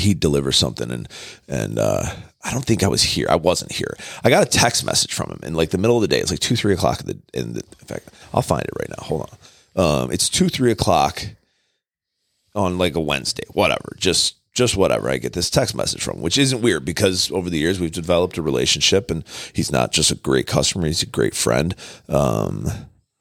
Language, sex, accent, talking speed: English, male, American, 235 wpm